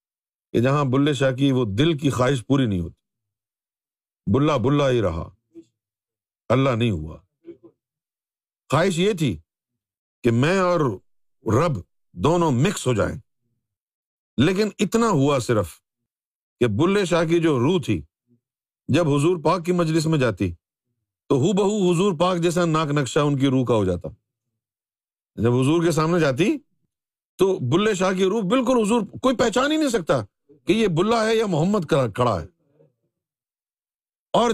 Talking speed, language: 155 wpm, Urdu